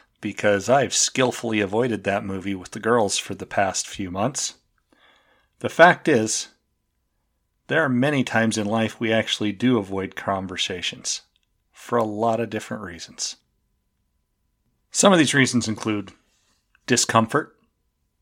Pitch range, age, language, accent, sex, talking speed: 100-125 Hz, 40-59, English, American, male, 130 wpm